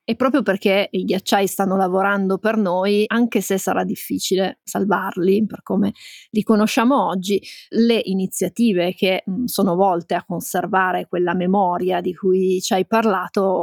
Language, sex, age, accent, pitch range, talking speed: Italian, female, 30-49, native, 190-225 Hz, 150 wpm